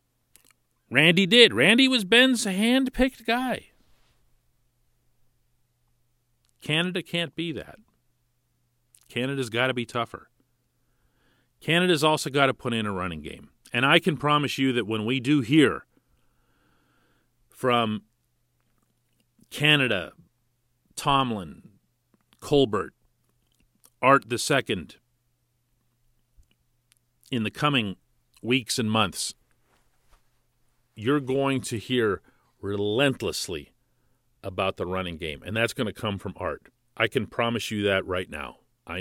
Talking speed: 110 wpm